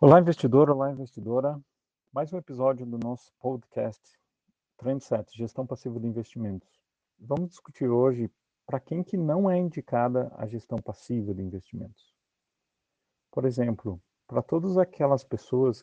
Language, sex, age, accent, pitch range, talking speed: Portuguese, male, 40-59, Brazilian, 110-125 Hz, 135 wpm